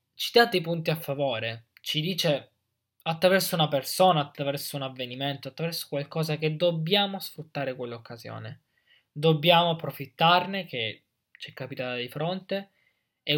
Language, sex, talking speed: Italian, male, 130 wpm